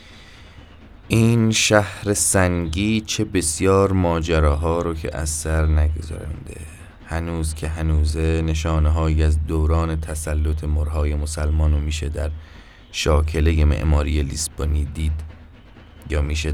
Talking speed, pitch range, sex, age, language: 110 wpm, 75-90 Hz, male, 20-39, Persian